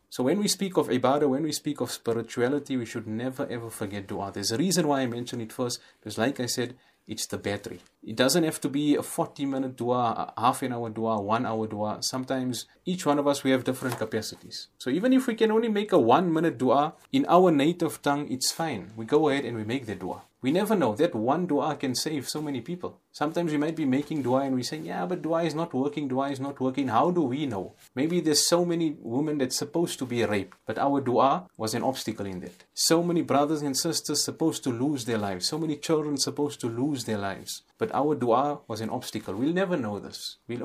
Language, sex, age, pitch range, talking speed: English, male, 30-49, 120-155 Hz, 240 wpm